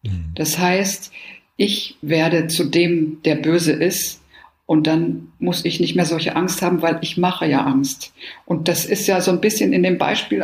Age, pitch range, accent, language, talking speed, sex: 50-69, 155-190 Hz, German, German, 190 wpm, female